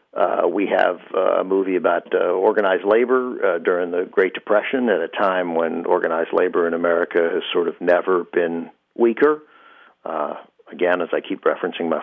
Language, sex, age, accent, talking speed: English, male, 50-69, American, 175 wpm